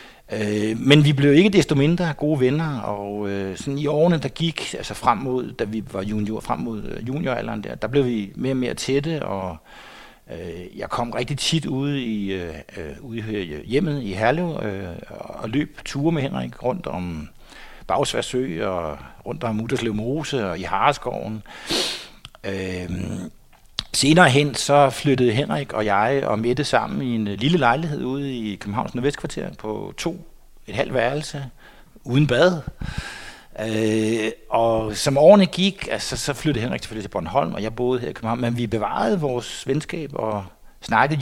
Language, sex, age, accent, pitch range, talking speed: Danish, male, 60-79, native, 105-145 Hz, 160 wpm